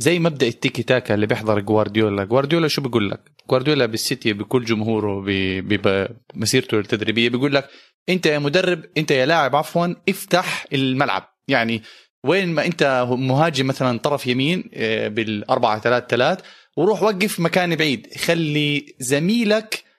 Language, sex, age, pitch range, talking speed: Arabic, male, 30-49, 125-175 Hz, 130 wpm